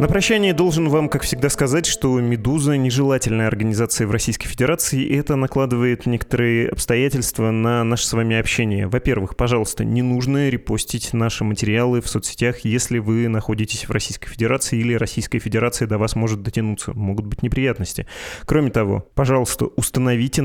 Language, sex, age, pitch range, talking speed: Russian, male, 20-39, 110-130 Hz, 160 wpm